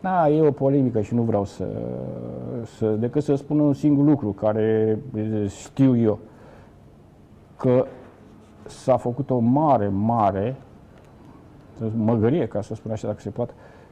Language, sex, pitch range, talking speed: Romanian, male, 105-135 Hz, 140 wpm